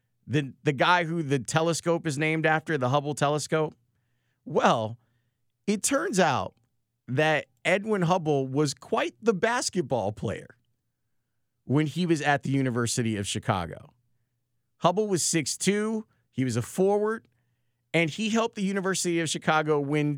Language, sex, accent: English, male, American